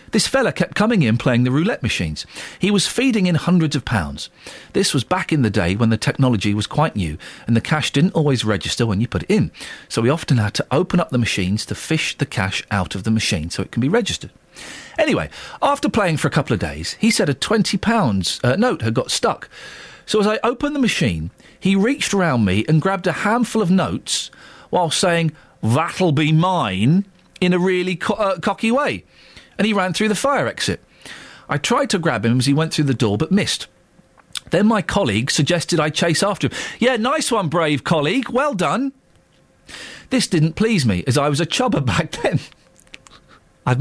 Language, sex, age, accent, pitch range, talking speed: English, male, 40-59, British, 120-200 Hz, 210 wpm